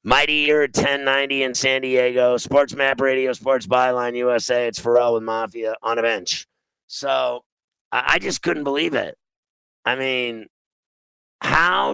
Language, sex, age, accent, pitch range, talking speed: English, male, 50-69, American, 125-150 Hz, 145 wpm